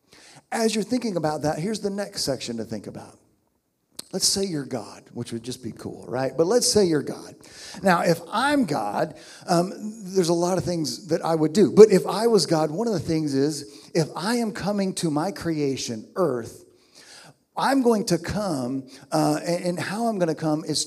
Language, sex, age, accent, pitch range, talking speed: English, male, 50-69, American, 155-210 Hz, 205 wpm